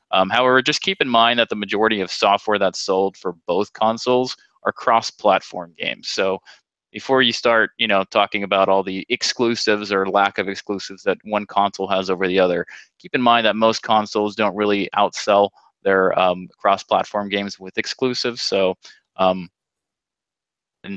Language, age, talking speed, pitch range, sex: English, 20-39, 170 wpm, 95-120 Hz, male